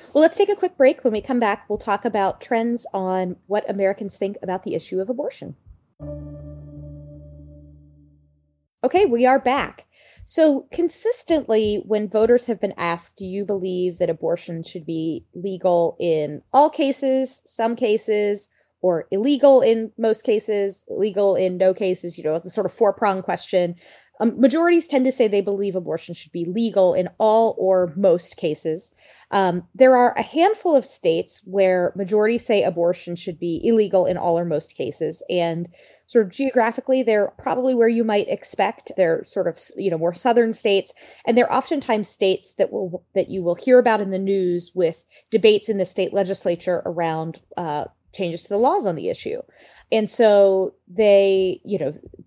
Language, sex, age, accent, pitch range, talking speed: English, female, 30-49, American, 175-230 Hz, 175 wpm